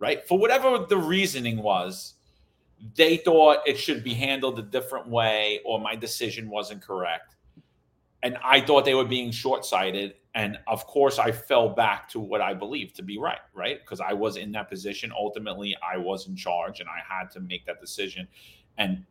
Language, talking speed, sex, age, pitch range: English, 190 wpm, male, 40-59, 110-145 Hz